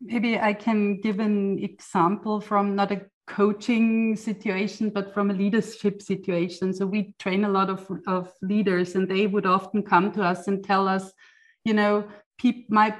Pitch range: 195-235 Hz